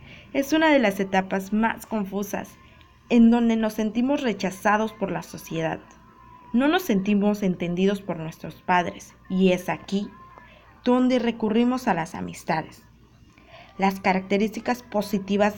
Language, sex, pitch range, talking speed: Spanish, female, 185-235 Hz, 125 wpm